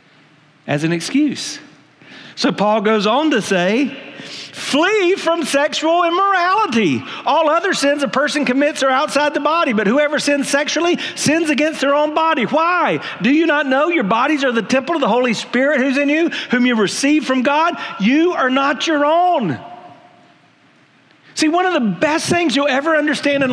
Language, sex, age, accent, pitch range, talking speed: English, male, 50-69, American, 225-310 Hz, 175 wpm